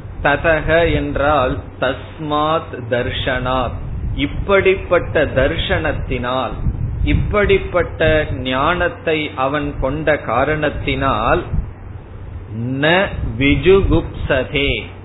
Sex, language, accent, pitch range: male, Tamil, native, 115-165 Hz